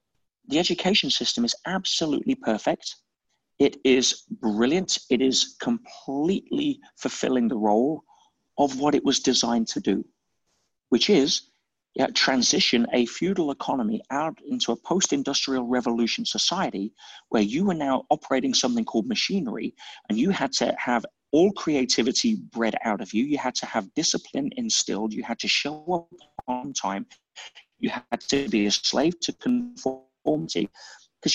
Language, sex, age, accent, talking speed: English, male, 40-59, British, 145 wpm